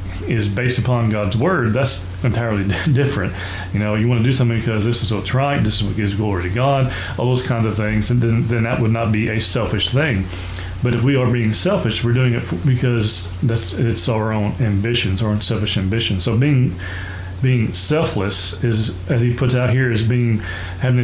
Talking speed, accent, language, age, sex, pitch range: 210 wpm, American, English, 30-49, male, 100-125 Hz